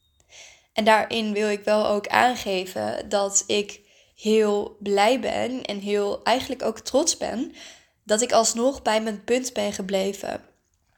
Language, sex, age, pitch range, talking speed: Dutch, female, 10-29, 210-255 Hz, 140 wpm